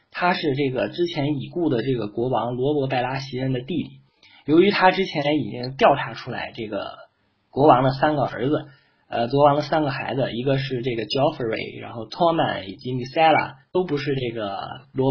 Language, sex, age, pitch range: Chinese, male, 20-39, 125-155 Hz